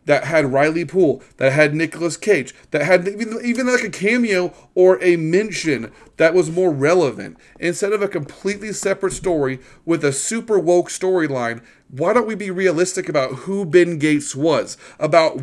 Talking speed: 170 wpm